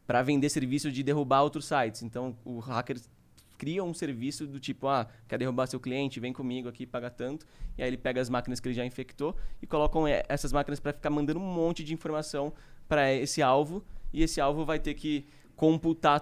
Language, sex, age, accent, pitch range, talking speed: Portuguese, male, 20-39, Brazilian, 125-160 Hz, 205 wpm